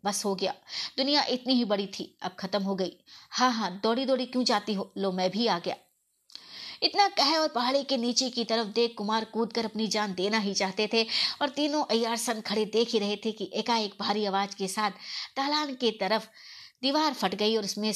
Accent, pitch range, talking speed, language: native, 195-245 Hz, 215 wpm, Hindi